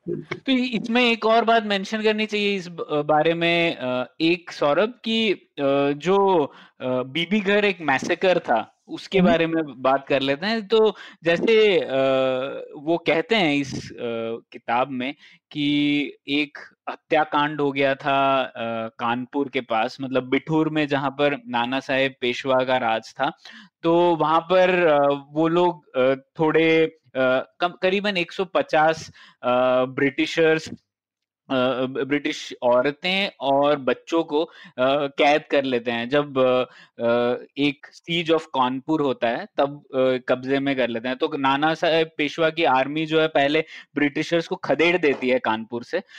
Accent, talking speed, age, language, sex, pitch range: native, 140 wpm, 20-39, Hindi, male, 130-175 Hz